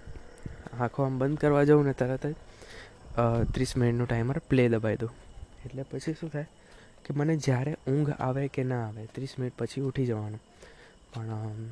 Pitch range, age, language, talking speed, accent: 115-145 Hz, 20-39, Gujarati, 160 wpm, native